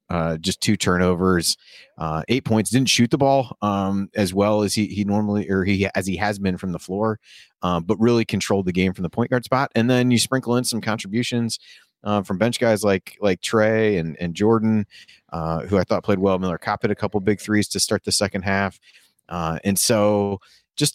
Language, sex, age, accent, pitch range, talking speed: English, male, 30-49, American, 85-105 Hz, 215 wpm